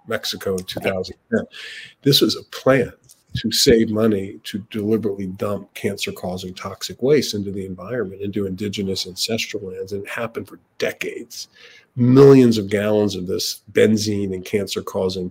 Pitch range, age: 95-115 Hz, 40-59